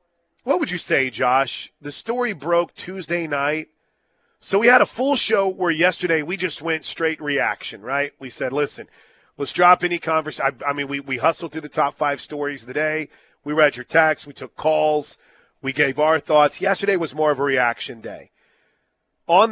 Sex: male